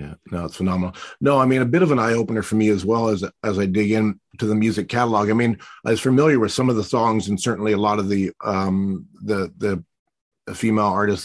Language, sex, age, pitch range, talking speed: English, male, 40-59, 100-115 Hz, 240 wpm